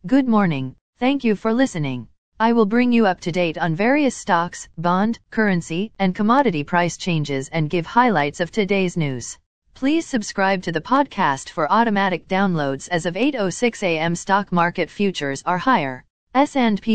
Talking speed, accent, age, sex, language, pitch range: 160 wpm, American, 40-59, female, English, 170-220 Hz